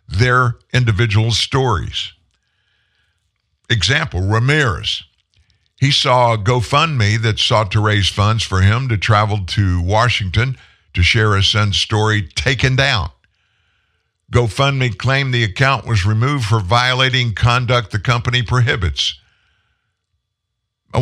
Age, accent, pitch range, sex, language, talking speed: 50-69, American, 95-125 Hz, male, English, 110 wpm